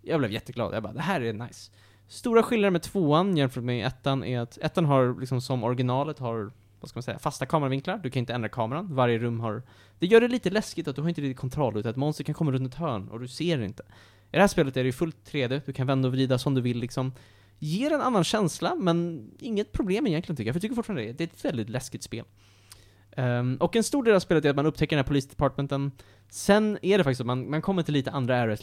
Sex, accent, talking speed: male, Norwegian, 270 wpm